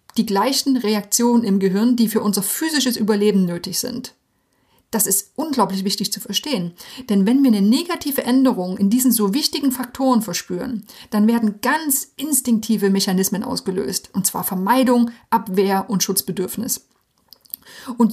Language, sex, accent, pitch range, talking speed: German, female, German, 200-250 Hz, 140 wpm